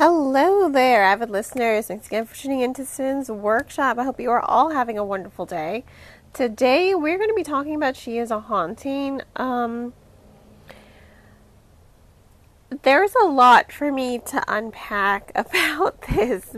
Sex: female